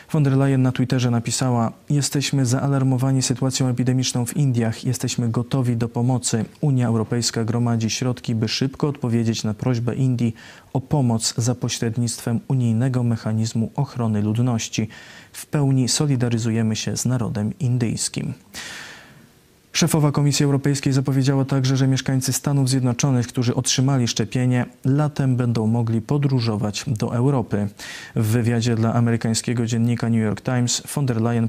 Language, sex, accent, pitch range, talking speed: Polish, male, native, 115-130 Hz, 135 wpm